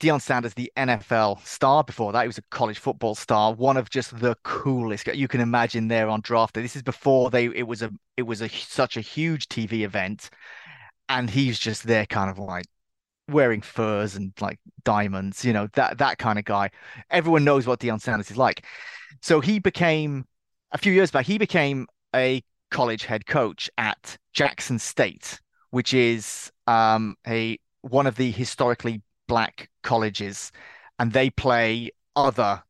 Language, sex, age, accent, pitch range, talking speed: English, male, 30-49, British, 110-140 Hz, 175 wpm